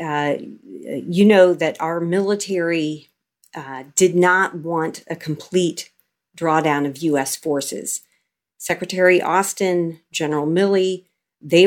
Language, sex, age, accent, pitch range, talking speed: English, female, 40-59, American, 155-190 Hz, 110 wpm